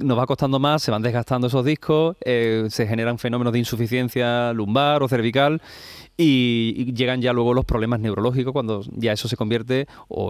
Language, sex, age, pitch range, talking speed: Spanish, male, 30-49, 110-125 Hz, 185 wpm